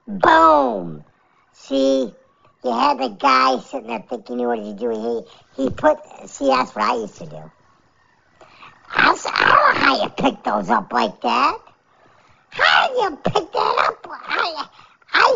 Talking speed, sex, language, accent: 160 wpm, male, English, American